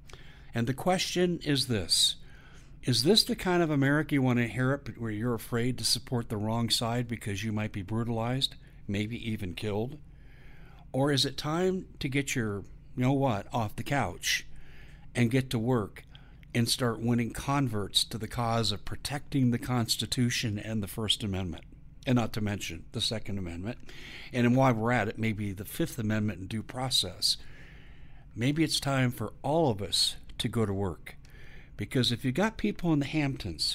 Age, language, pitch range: 60-79, English, 110-145 Hz